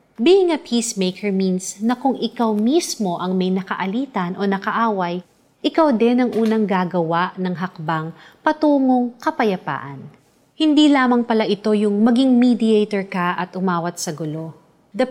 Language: Filipino